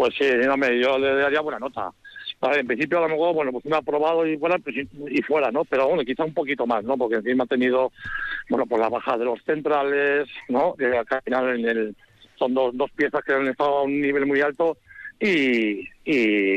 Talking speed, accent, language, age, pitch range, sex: 210 wpm, Spanish, Spanish, 60-79, 125-155 Hz, male